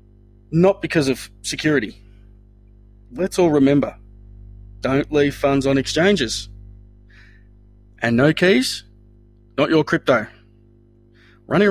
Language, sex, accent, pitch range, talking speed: English, male, Australian, 105-135 Hz, 95 wpm